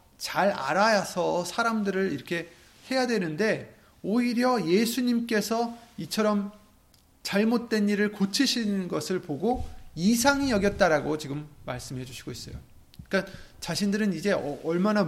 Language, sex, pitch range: Korean, male, 145-205 Hz